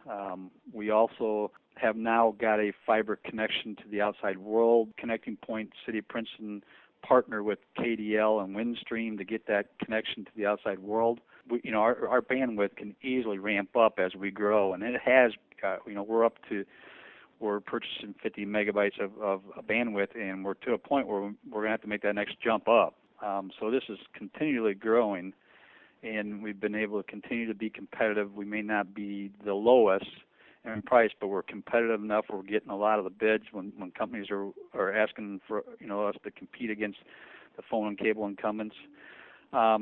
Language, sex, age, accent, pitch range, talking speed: English, male, 50-69, American, 100-115 Hz, 195 wpm